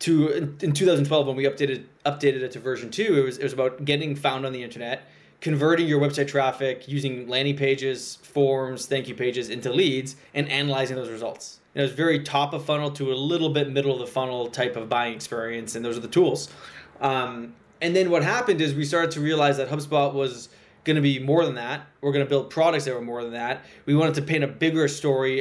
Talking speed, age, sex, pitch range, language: 225 wpm, 20-39, male, 130-155 Hz, English